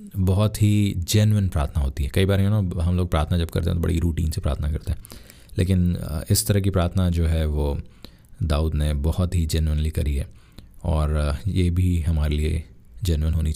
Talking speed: 200 wpm